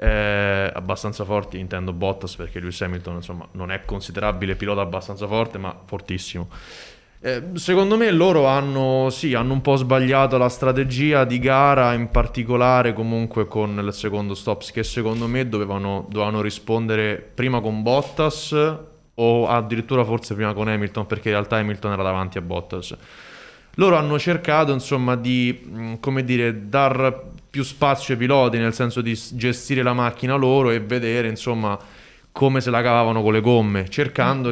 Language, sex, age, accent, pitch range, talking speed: Italian, male, 20-39, native, 100-130 Hz, 155 wpm